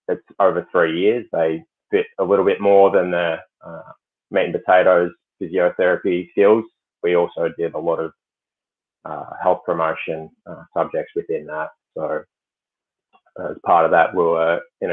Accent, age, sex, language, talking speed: Australian, 20-39, male, English, 155 wpm